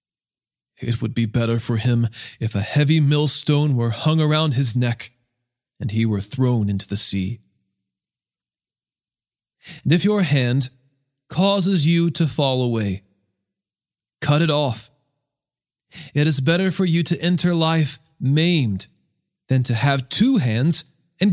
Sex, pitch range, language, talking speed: male, 130-165 Hz, English, 140 wpm